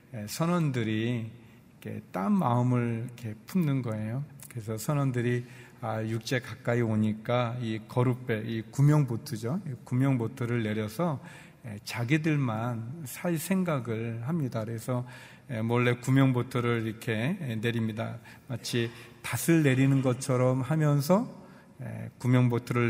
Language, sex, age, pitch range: Korean, male, 40-59, 115-135 Hz